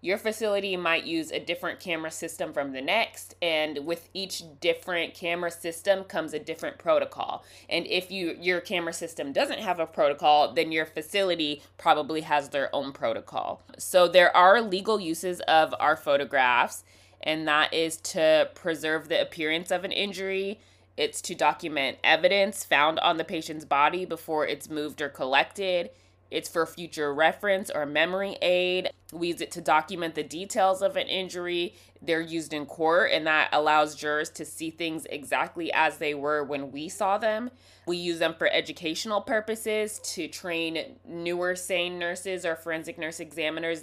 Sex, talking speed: female, 165 wpm